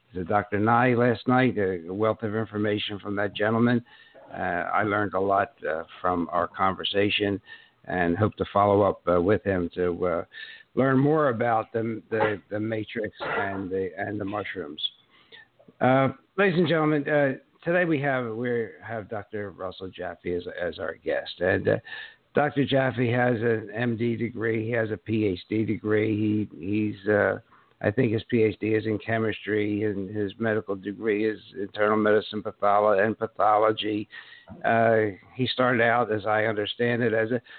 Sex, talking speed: male, 165 wpm